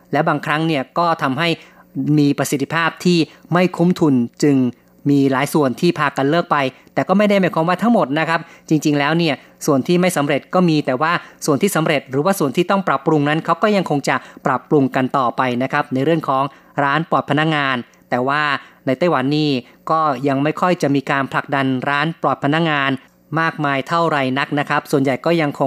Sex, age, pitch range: female, 30-49, 140-165 Hz